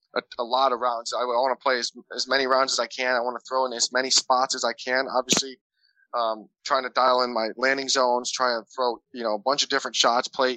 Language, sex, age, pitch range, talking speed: English, male, 20-39, 125-140 Hz, 265 wpm